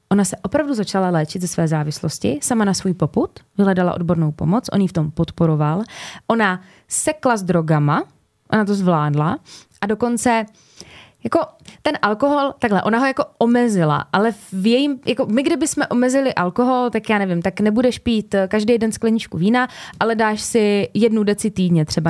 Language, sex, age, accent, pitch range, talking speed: Czech, female, 20-39, native, 175-230 Hz, 170 wpm